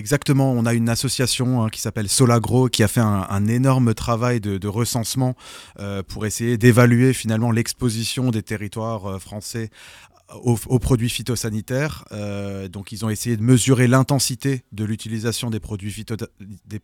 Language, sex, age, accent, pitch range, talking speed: French, male, 30-49, French, 105-120 Hz, 155 wpm